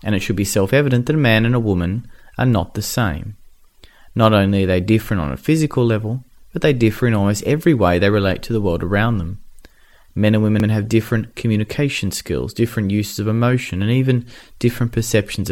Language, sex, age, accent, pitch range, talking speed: English, male, 30-49, Australian, 100-120 Hz, 205 wpm